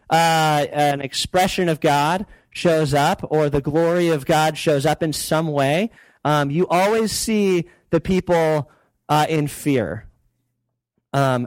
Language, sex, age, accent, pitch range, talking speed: English, male, 30-49, American, 140-170 Hz, 140 wpm